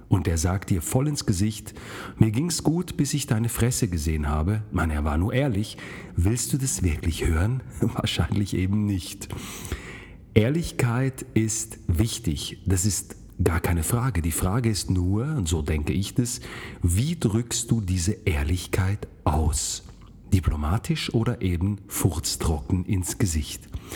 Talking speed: 145 wpm